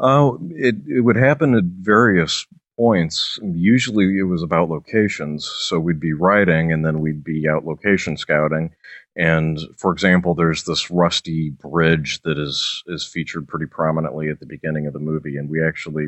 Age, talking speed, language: 40-59, 170 wpm, English